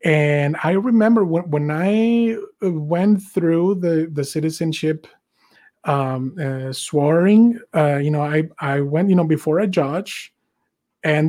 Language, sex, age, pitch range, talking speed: English, male, 30-49, 150-190 Hz, 135 wpm